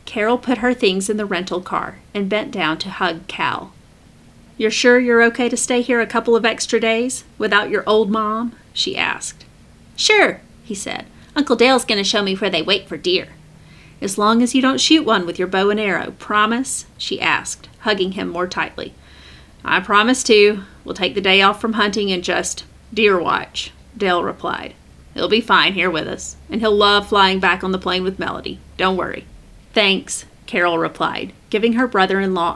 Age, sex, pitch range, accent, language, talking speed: 30-49, female, 185-235 Hz, American, English, 195 wpm